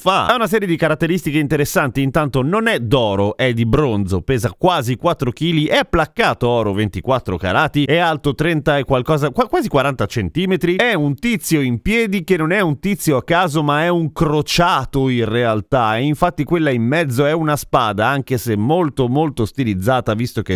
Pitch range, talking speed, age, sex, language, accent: 130-180 Hz, 185 wpm, 30-49, male, Italian, native